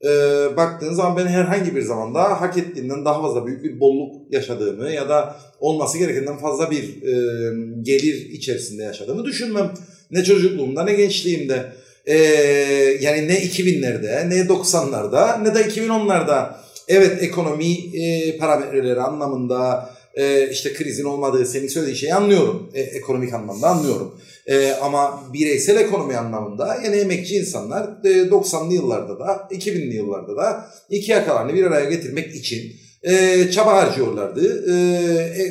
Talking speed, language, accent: 140 wpm, Turkish, native